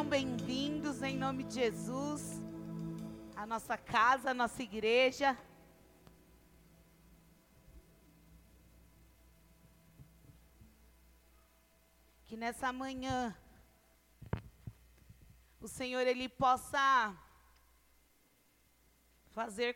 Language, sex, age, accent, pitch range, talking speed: Portuguese, female, 30-49, Brazilian, 175-285 Hz, 60 wpm